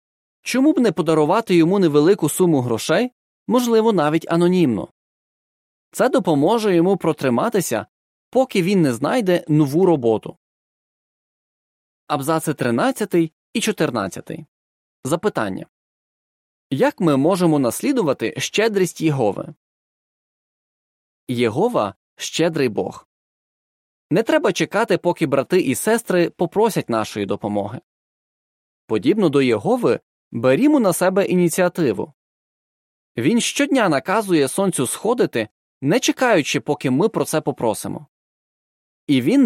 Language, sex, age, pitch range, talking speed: Ukrainian, male, 20-39, 150-210 Hz, 100 wpm